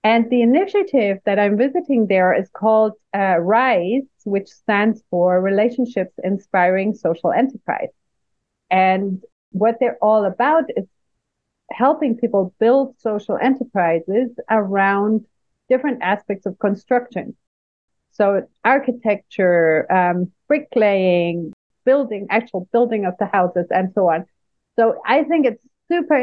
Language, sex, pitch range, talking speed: English, female, 185-235 Hz, 120 wpm